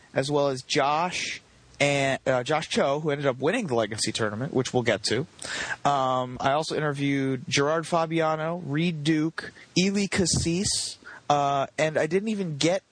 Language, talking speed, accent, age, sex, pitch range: English, 165 wpm, American, 30-49, male, 125-160 Hz